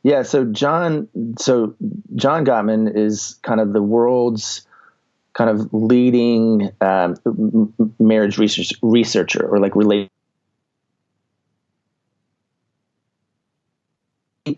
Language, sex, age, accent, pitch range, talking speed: English, male, 30-49, American, 105-125 Hz, 90 wpm